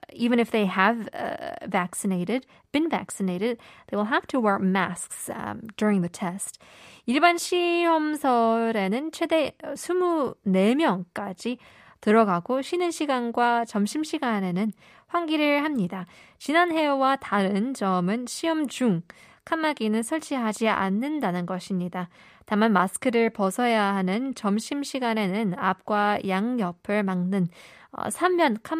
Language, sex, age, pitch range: Korean, female, 20-39, 190-265 Hz